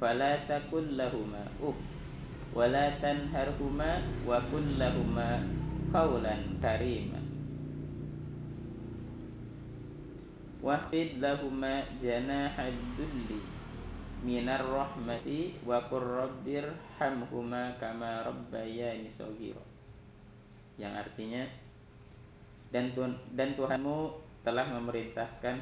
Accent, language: native, Indonesian